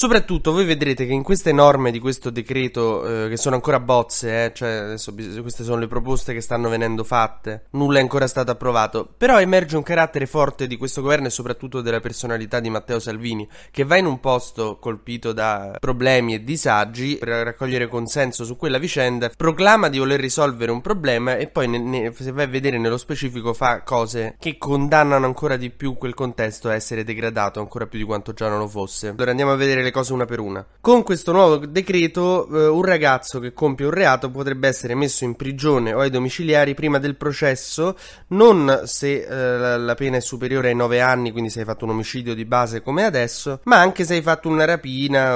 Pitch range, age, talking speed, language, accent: 115-140 Hz, 20-39, 210 wpm, Italian, native